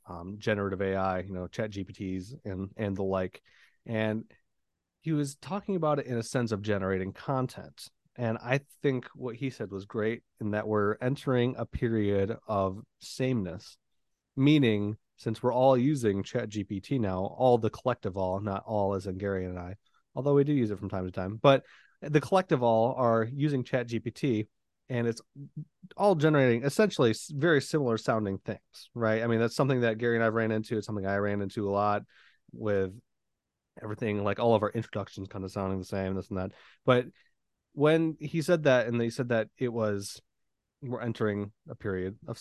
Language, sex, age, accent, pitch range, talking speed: English, male, 30-49, American, 100-135 Hz, 190 wpm